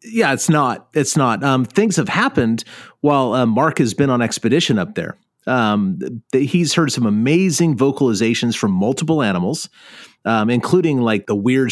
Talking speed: 175 wpm